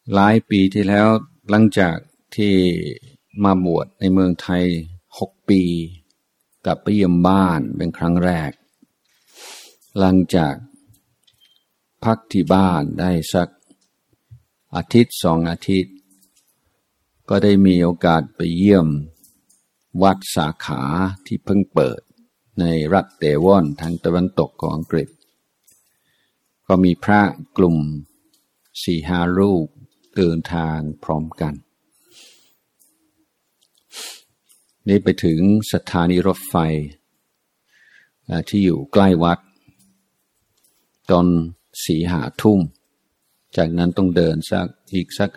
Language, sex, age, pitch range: Thai, male, 60-79, 85-100 Hz